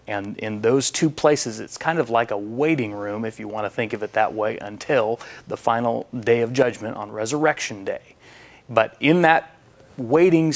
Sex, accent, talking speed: male, American, 195 wpm